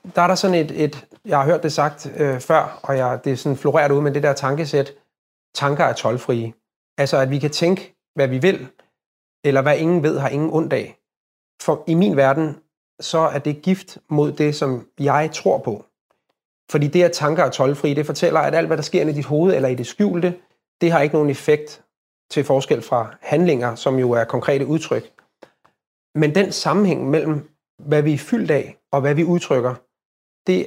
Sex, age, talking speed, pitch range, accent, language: male, 30-49, 205 wpm, 135-165 Hz, native, Danish